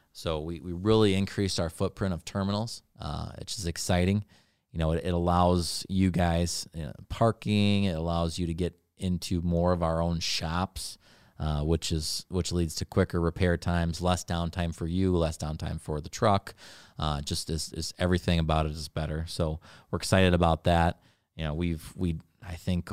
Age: 30-49